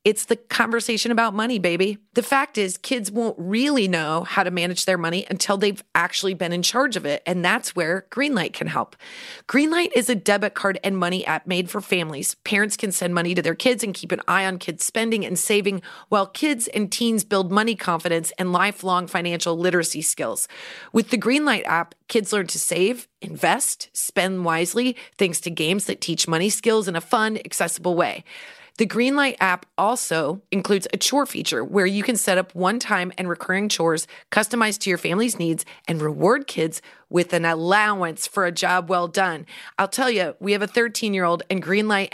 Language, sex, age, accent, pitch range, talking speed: English, female, 30-49, American, 175-220 Hz, 195 wpm